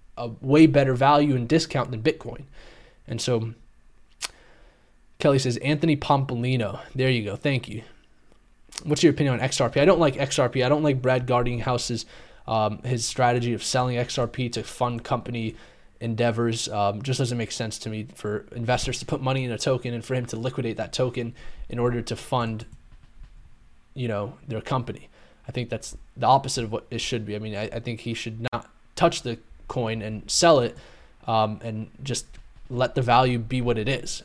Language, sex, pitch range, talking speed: English, male, 115-130 Hz, 190 wpm